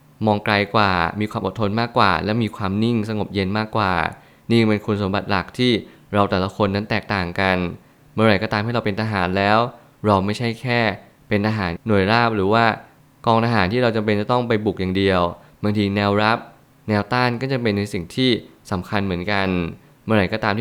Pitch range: 100-120 Hz